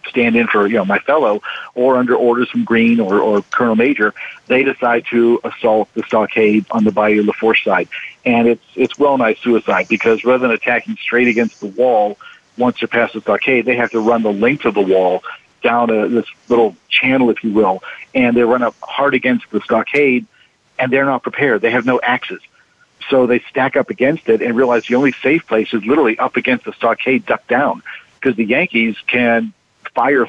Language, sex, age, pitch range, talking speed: English, male, 50-69, 115-130 Hz, 210 wpm